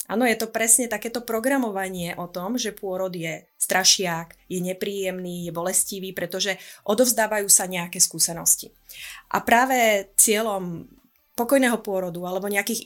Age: 20-39